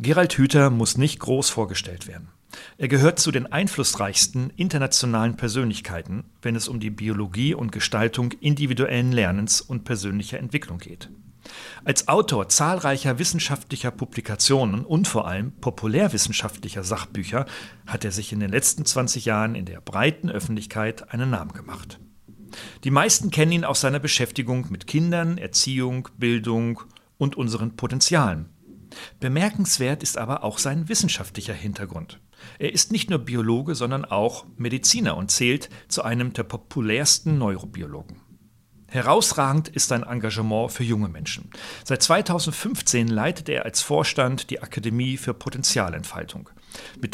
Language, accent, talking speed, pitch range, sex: German, German, 135 wpm, 110-140 Hz, male